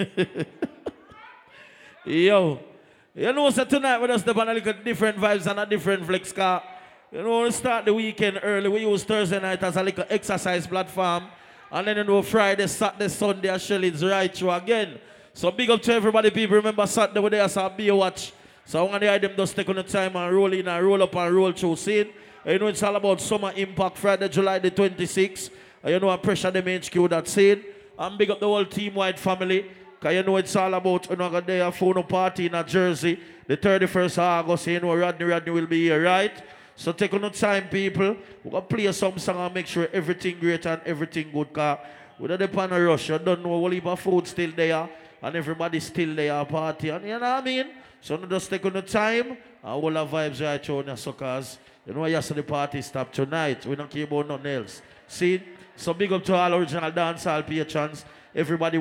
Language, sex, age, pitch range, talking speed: English, male, 20-39, 165-200 Hz, 215 wpm